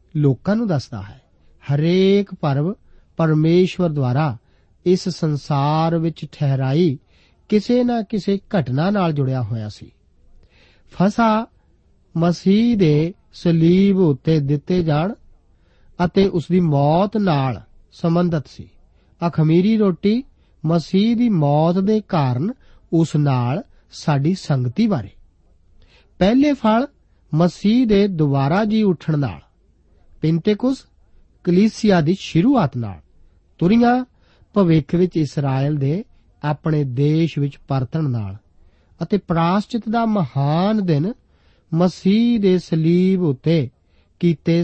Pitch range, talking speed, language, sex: 135-195 Hz, 80 wpm, Punjabi, male